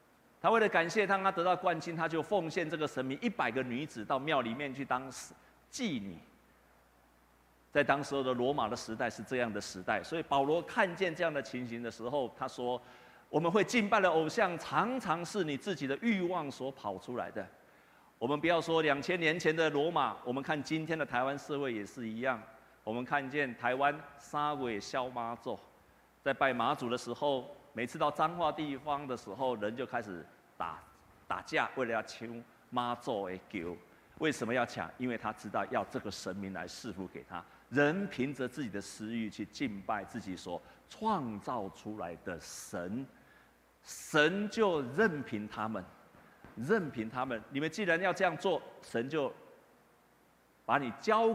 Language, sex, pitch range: Chinese, male, 115-165 Hz